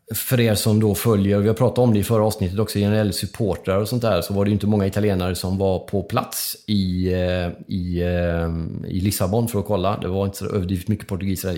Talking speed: 225 wpm